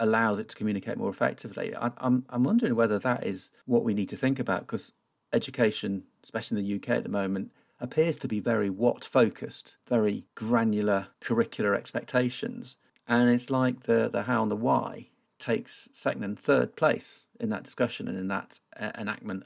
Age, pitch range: 40-59, 105-135 Hz